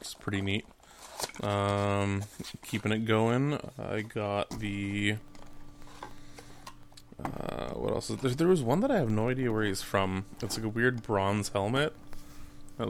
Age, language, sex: 20-39, English, male